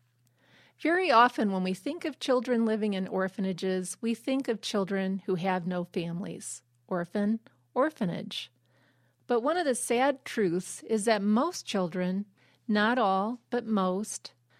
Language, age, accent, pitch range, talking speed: English, 40-59, American, 185-230 Hz, 140 wpm